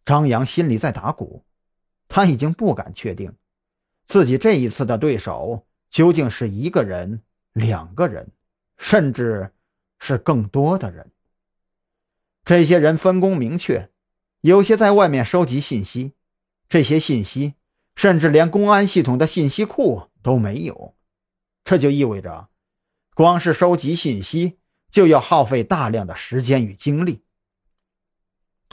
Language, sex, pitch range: Chinese, male, 100-165 Hz